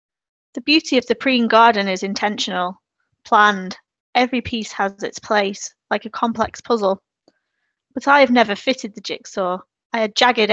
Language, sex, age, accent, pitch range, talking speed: English, female, 20-39, British, 200-235 Hz, 160 wpm